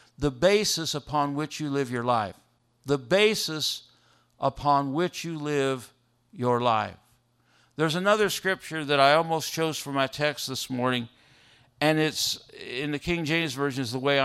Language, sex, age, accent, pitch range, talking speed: English, male, 50-69, American, 130-185 Hz, 160 wpm